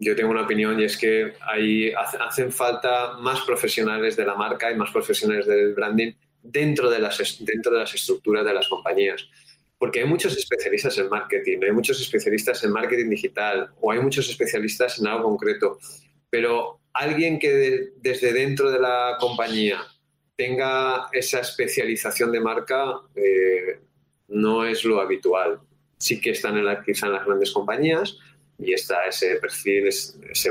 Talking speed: 150 wpm